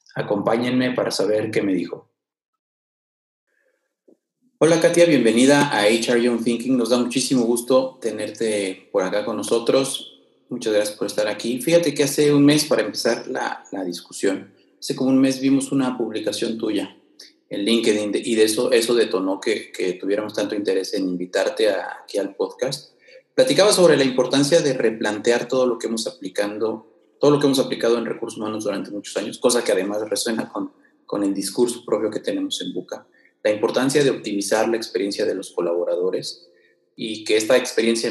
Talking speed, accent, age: 175 wpm, Mexican, 30-49